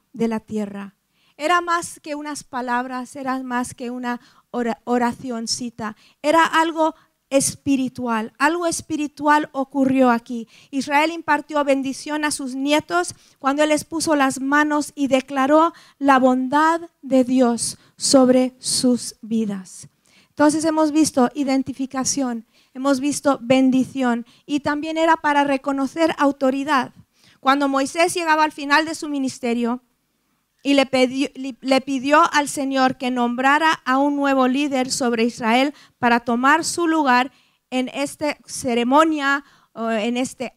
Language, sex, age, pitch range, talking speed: Spanish, female, 40-59, 245-295 Hz, 125 wpm